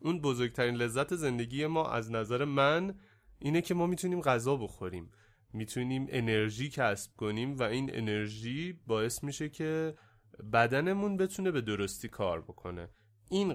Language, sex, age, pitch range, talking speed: Persian, male, 30-49, 110-155 Hz, 135 wpm